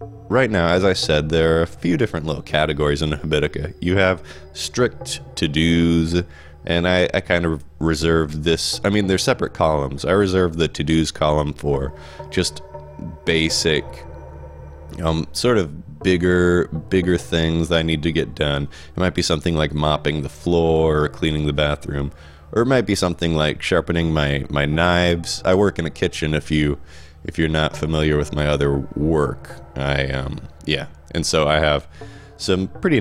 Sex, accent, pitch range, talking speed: male, American, 75-85 Hz, 175 wpm